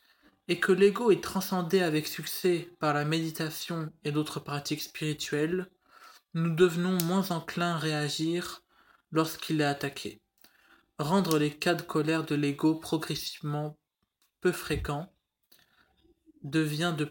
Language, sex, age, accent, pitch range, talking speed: French, male, 20-39, French, 150-175 Hz, 125 wpm